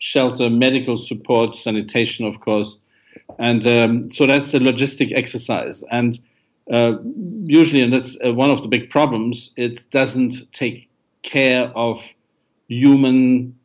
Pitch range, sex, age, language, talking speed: 115-135 Hz, male, 50-69, English, 130 wpm